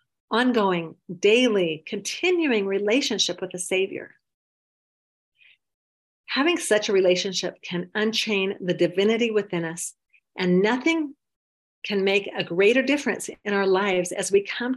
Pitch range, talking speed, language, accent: 180-235 Hz, 120 wpm, English, American